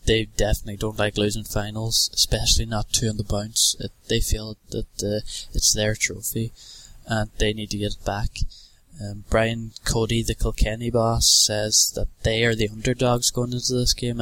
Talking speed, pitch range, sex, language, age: 180 wpm, 105-120 Hz, male, English, 10-29